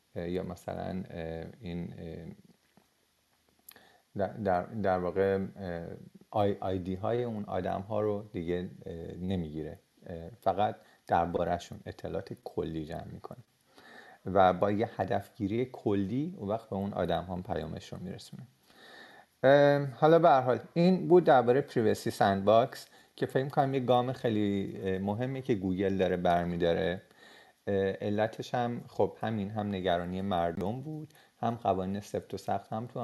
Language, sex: Persian, male